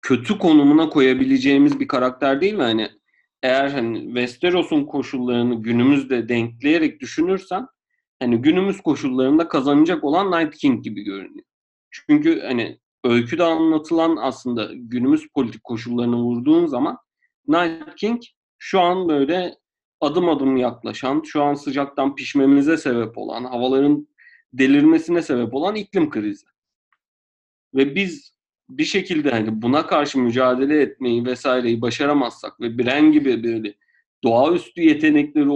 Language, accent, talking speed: Turkish, native, 120 wpm